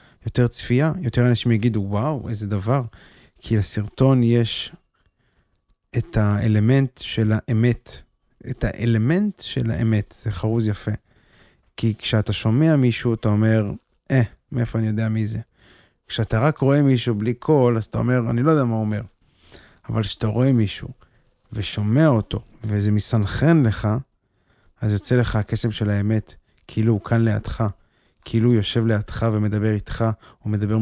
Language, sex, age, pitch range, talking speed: Hebrew, male, 30-49, 105-120 Hz, 145 wpm